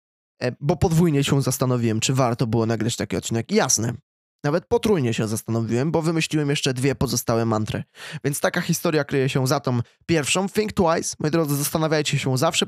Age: 20-39